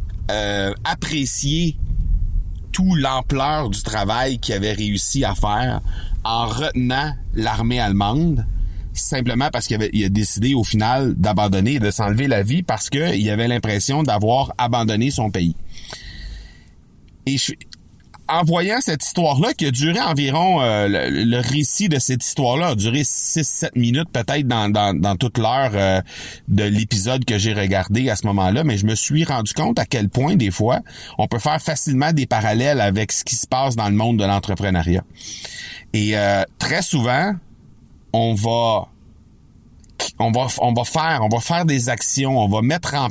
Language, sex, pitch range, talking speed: French, male, 105-145 Hz, 170 wpm